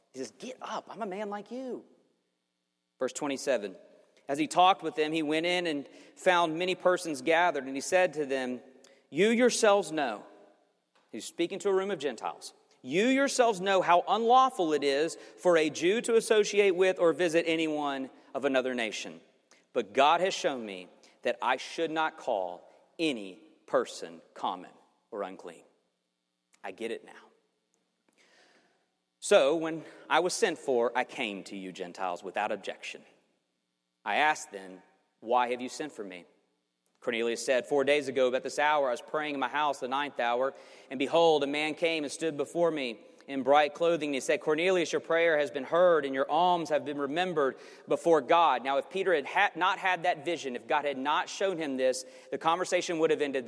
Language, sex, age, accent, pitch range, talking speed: English, male, 40-59, American, 135-180 Hz, 185 wpm